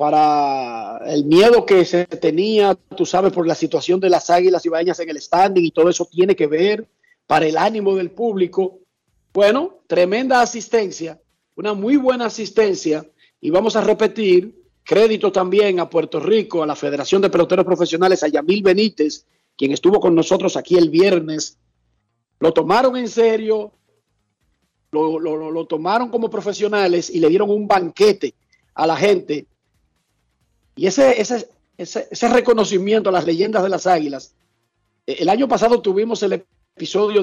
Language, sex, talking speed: Spanish, male, 160 wpm